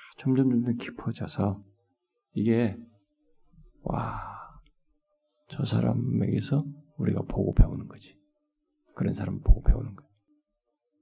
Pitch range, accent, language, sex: 110-165 Hz, native, Korean, male